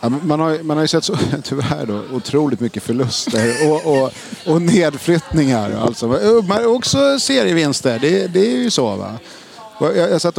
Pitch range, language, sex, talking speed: 125-160 Hz, Swedish, male, 175 wpm